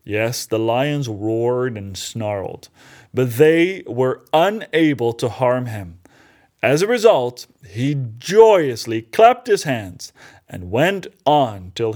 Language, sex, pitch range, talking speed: English, male, 120-160 Hz, 125 wpm